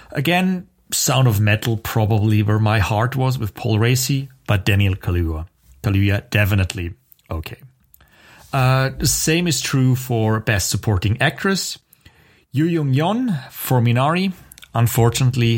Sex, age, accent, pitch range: male, 30-49, German, 95-130 Hz